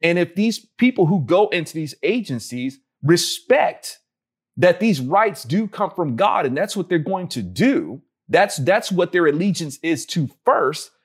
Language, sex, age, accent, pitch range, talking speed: English, male, 40-59, American, 160-220 Hz, 175 wpm